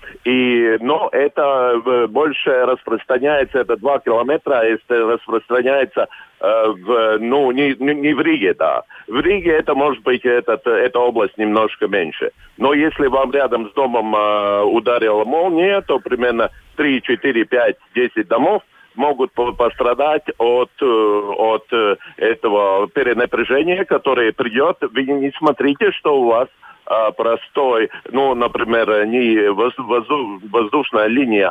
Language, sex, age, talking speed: Russian, male, 50-69, 125 wpm